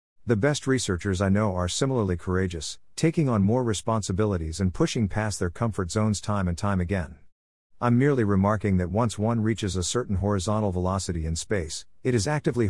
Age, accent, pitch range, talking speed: 50-69, American, 90-115 Hz, 180 wpm